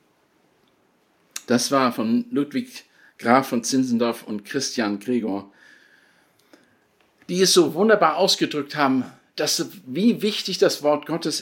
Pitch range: 145-230 Hz